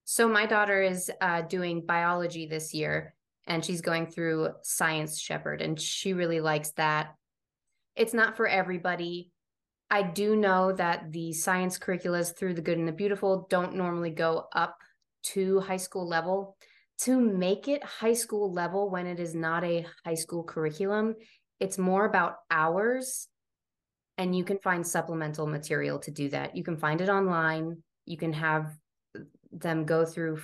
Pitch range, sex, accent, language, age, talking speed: 160-190 Hz, female, American, English, 20-39, 165 wpm